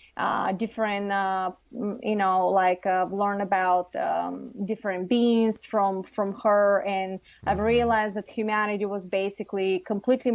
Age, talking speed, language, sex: 20-39, 140 wpm, English, female